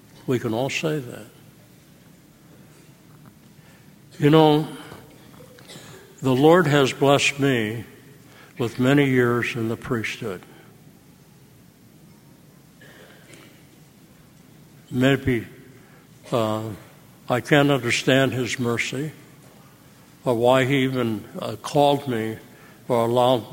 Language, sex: English, male